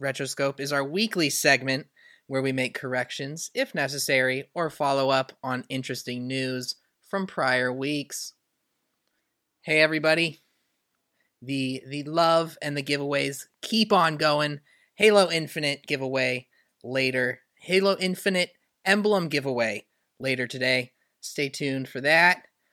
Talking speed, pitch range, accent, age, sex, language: 120 wpm, 140-195 Hz, American, 20-39, male, English